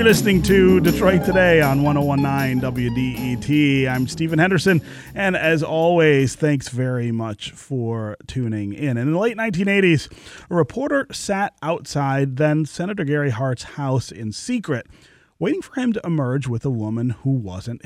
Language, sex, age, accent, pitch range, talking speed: English, male, 30-49, American, 125-175 Hz, 150 wpm